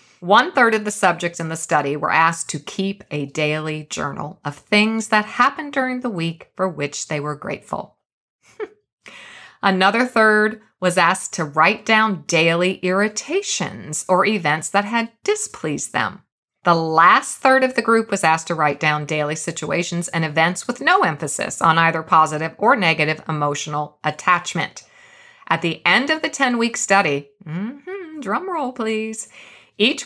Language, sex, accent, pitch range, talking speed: English, female, American, 160-230 Hz, 155 wpm